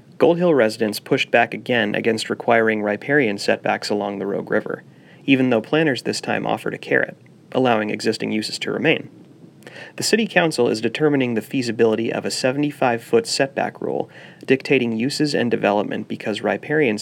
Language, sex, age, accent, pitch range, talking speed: English, male, 30-49, American, 110-145 Hz, 160 wpm